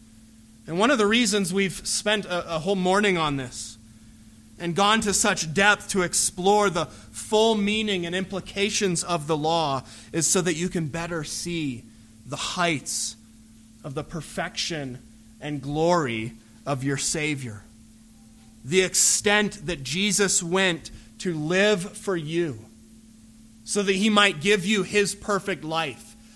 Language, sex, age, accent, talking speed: English, male, 30-49, American, 140 wpm